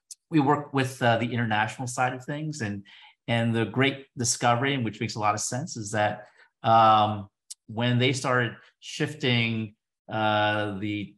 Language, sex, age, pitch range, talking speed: English, male, 40-59, 105-130 Hz, 155 wpm